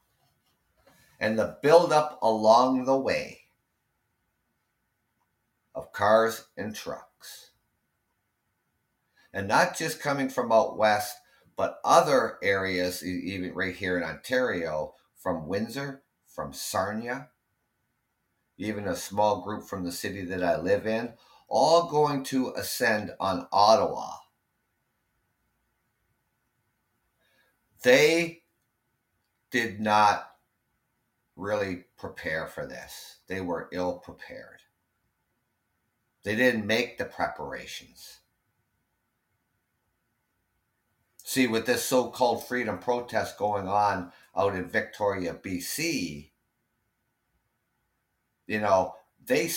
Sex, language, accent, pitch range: male, English, American, 95-125 Hz